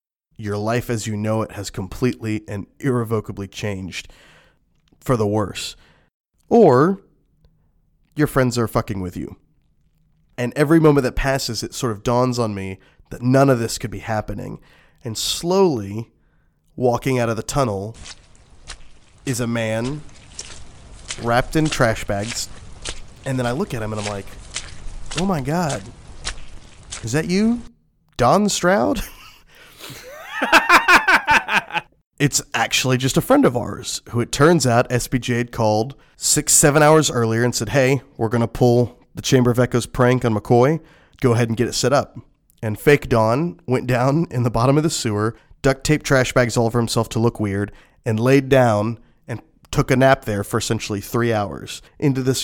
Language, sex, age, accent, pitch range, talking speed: English, male, 20-39, American, 110-140 Hz, 165 wpm